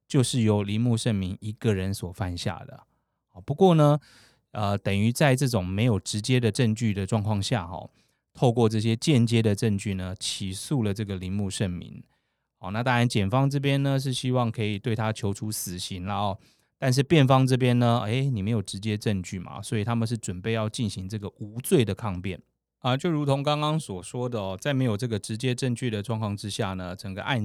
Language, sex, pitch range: Chinese, male, 100-130 Hz